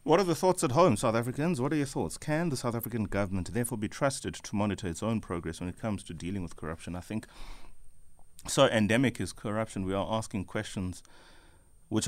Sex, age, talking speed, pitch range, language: male, 30-49, 215 wpm, 90-110 Hz, English